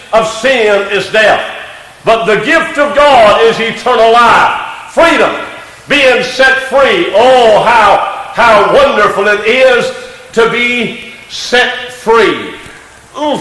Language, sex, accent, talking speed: English, male, American, 120 wpm